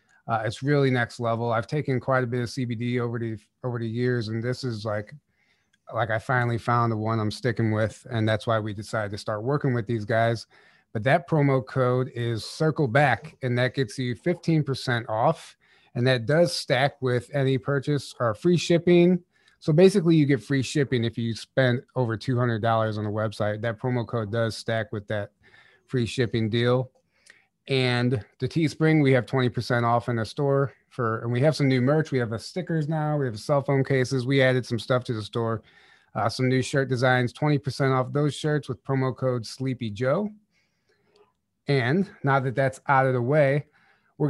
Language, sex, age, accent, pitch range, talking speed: English, male, 30-49, American, 115-145 Hz, 200 wpm